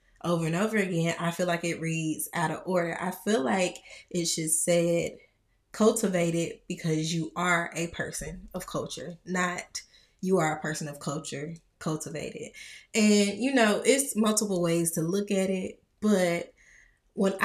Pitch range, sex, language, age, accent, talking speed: 170-200 Hz, female, English, 20-39, American, 160 wpm